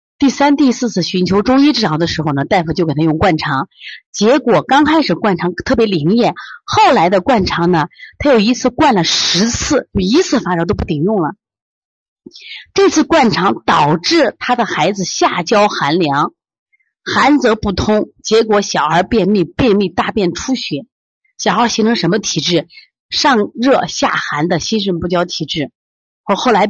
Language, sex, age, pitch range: Chinese, female, 30-49, 170-240 Hz